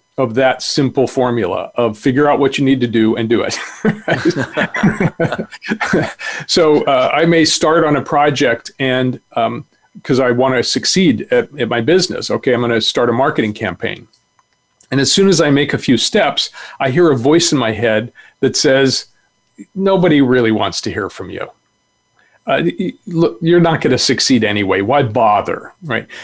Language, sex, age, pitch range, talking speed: English, male, 40-59, 125-160 Hz, 180 wpm